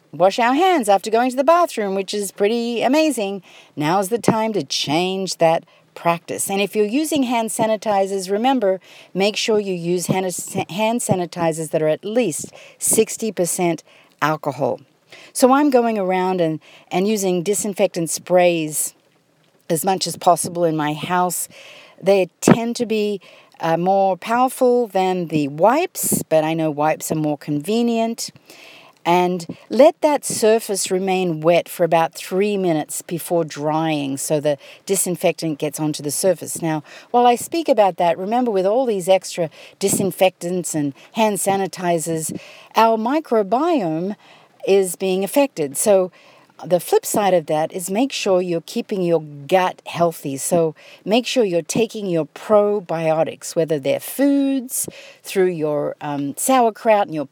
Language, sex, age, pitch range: English, female, 50-69, 165-220 Hz